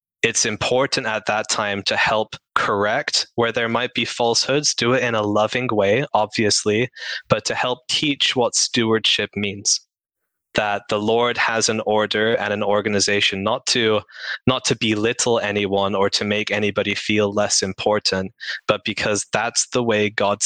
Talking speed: 160 wpm